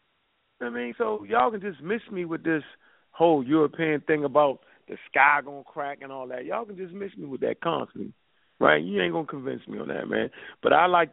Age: 40-59